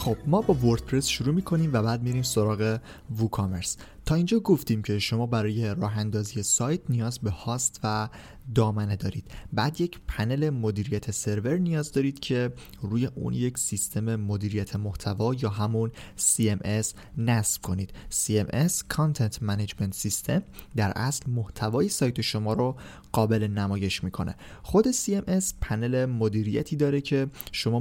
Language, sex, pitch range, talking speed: Persian, male, 105-130 Hz, 140 wpm